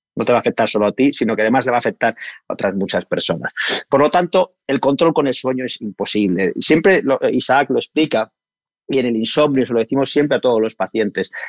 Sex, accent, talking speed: male, Spanish, 235 wpm